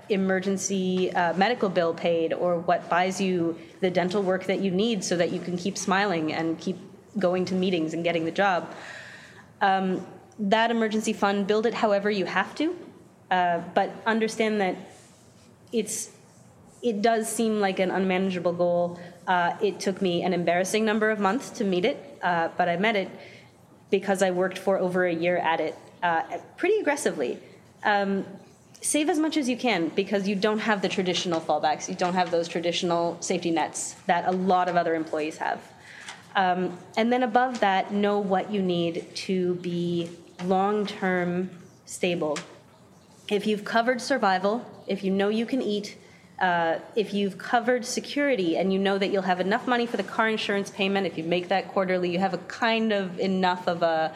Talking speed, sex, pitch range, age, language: 180 wpm, female, 175-210 Hz, 20-39, English